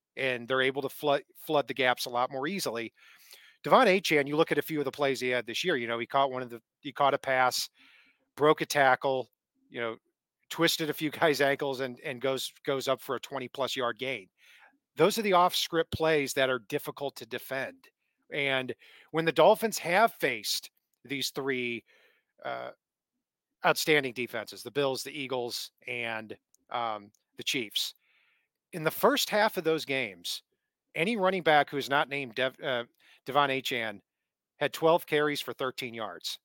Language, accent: English, American